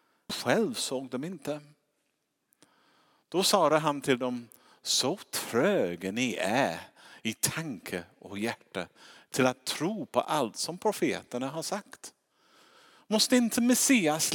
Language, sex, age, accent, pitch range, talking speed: Swedish, male, 50-69, Norwegian, 130-195 Hz, 120 wpm